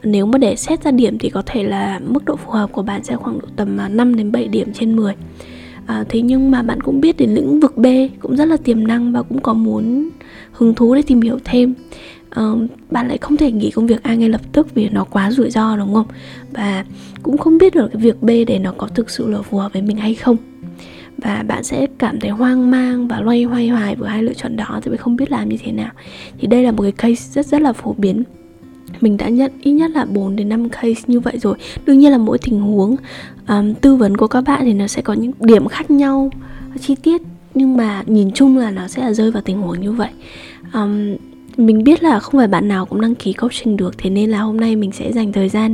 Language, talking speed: Vietnamese, 255 wpm